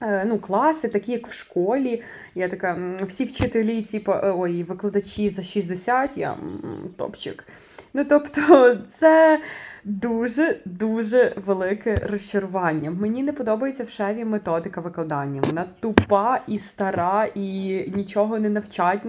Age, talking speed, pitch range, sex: 20-39, 120 wpm, 180-230 Hz, female